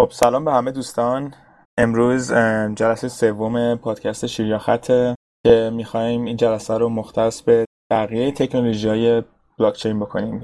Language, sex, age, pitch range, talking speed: Persian, male, 20-39, 115-125 Hz, 120 wpm